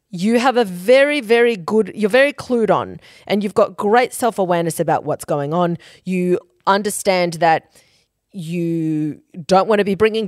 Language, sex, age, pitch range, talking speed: English, female, 30-49, 165-225 Hz, 165 wpm